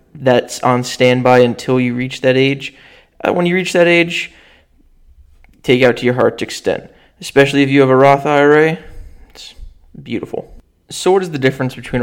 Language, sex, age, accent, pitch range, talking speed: English, male, 20-39, American, 125-145 Hz, 175 wpm